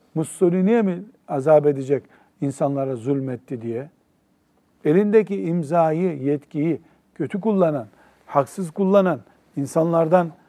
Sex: male